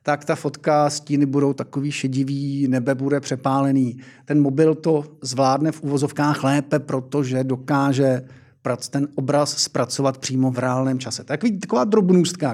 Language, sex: Czech, male